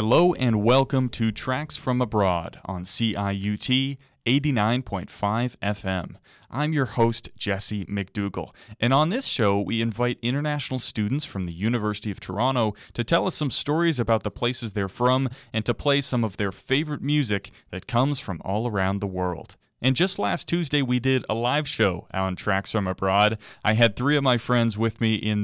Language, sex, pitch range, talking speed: English, male, 105-130 Hz, 180 wpm